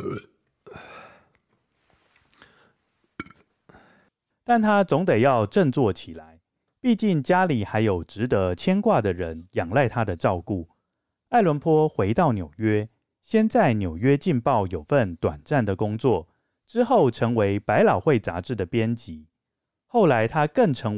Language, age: Chinese, 30-49